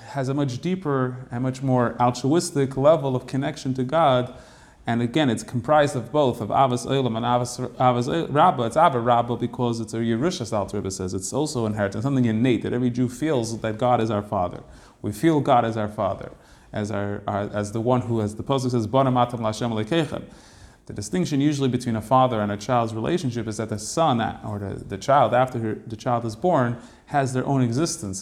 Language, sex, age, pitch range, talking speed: English, male, 30-49, 110-130 Hz, 200 wpm